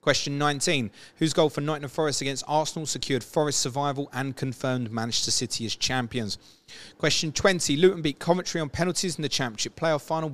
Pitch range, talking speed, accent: 115-150 Hz, 175 wpm, British